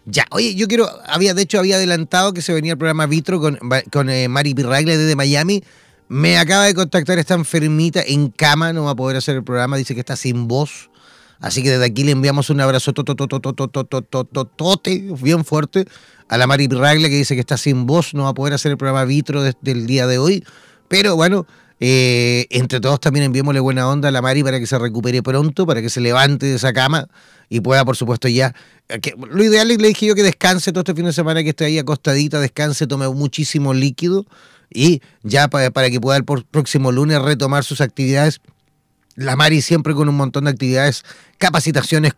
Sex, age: male, 30-49